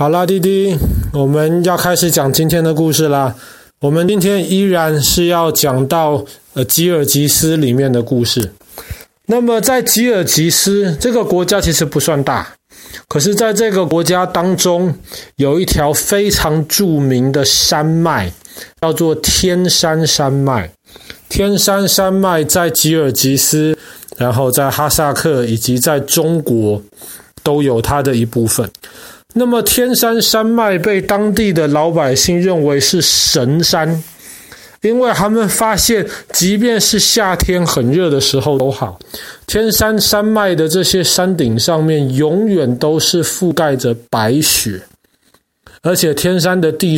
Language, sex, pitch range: Chinese, male, 140-190 Hz